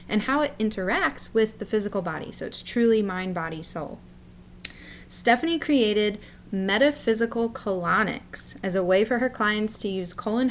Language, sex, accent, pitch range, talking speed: English, female, American, 185-235 Hz, 155 wpm